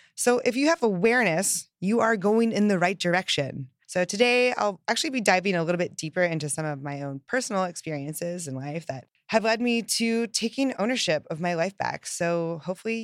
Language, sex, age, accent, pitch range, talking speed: English, female, 20-39, American, 150-225 Hz, 200 wpm